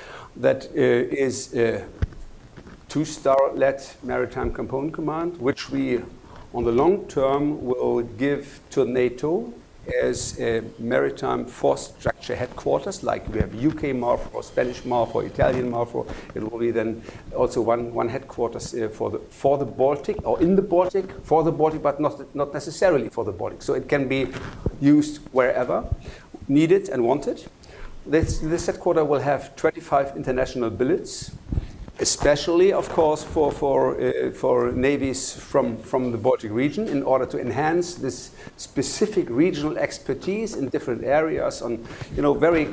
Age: 60-79